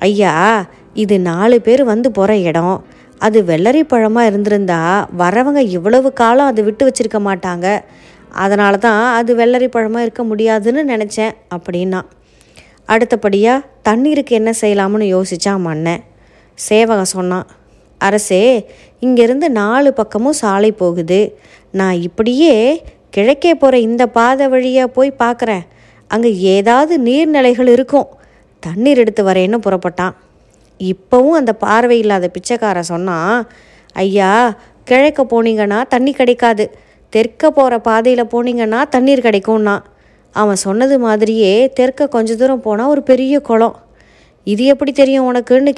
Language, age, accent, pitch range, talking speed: Tamil, 20-39, native, 200-250 Hz, 115 wpm